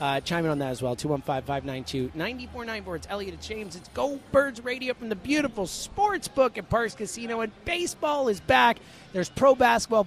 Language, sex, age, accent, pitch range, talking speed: English, male, 30-49, American, 180-240 Hz, 175 wpm